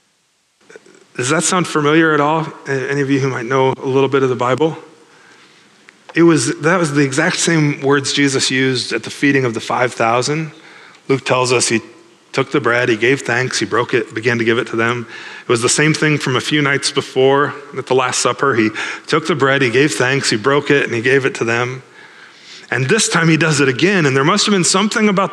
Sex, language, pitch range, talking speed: male, English, 125-160 Hz, 225 wpm